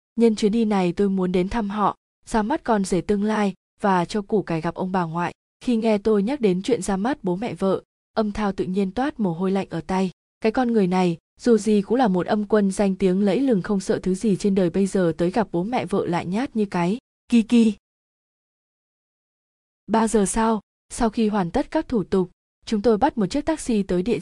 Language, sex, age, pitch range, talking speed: Vietnamese, female, 20-39, 185-225 Hz, 235 wpm